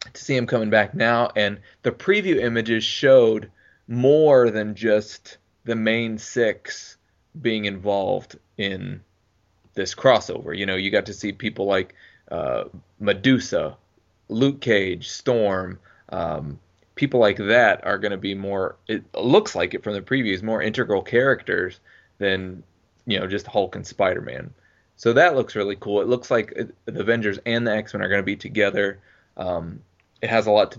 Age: 20-39